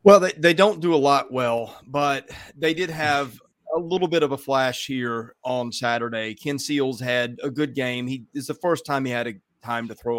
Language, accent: English, American